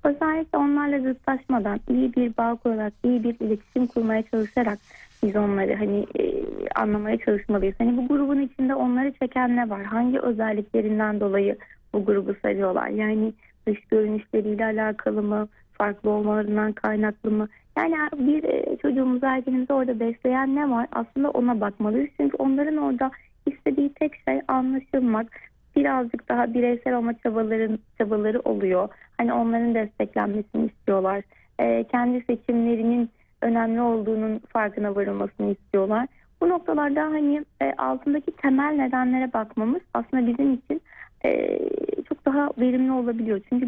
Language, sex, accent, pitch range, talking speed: Turkish, female, native, 215-275 Hz, 130 wpm